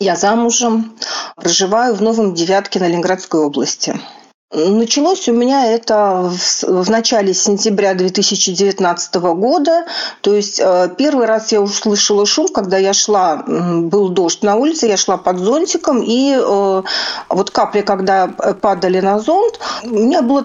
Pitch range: 195-245 Hz